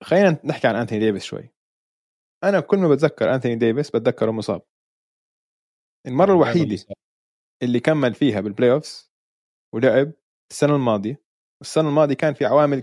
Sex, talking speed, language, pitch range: male, 135 wpm, Arabic, 125-155 Hz